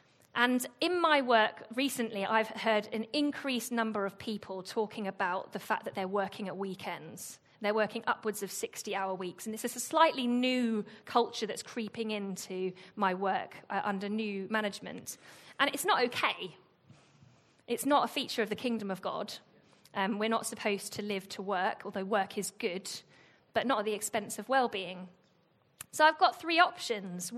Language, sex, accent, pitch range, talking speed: English, female, British, 195-245 Hz, 175 wpm